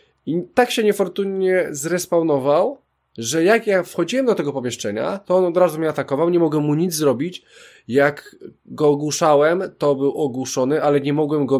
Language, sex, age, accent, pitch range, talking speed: Polish, male, 20-39, native, 125-165 Hz, 170 wpm